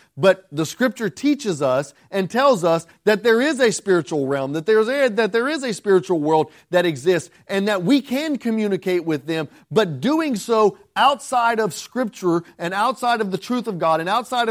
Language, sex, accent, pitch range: English, male, American, 165-235 Hz